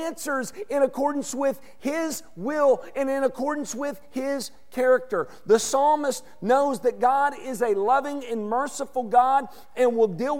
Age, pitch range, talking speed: 50-69, 215-275 Hz, 150 wpm